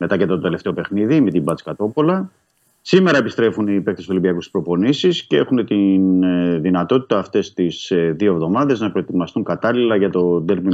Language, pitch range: Greek, 85-110 Hz